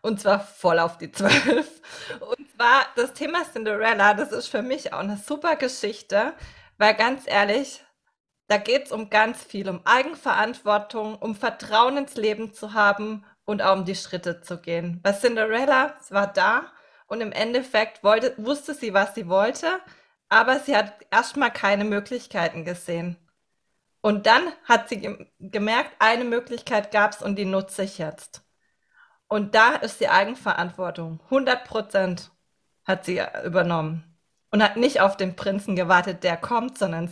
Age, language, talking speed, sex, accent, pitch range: 20-39, German, 155 wpm, female, German, 195-250 Hz